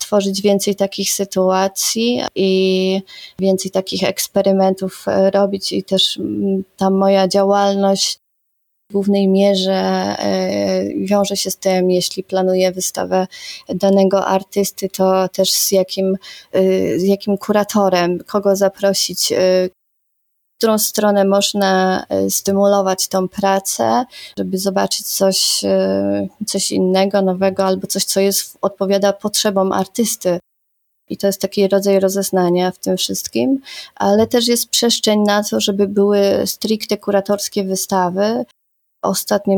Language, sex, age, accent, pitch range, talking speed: Polish, female, 20-39, native, 185-200 Hz, 115 wpm